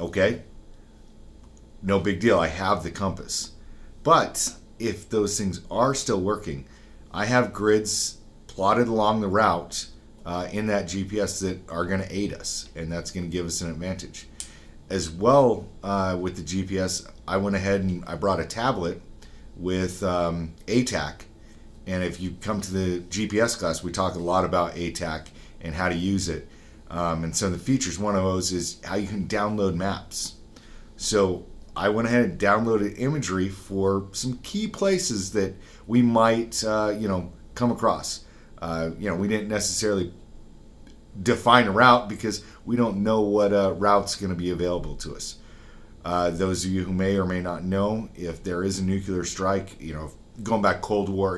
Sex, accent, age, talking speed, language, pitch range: male, American, 40-59, 180 wpm, English, 90-105 Hz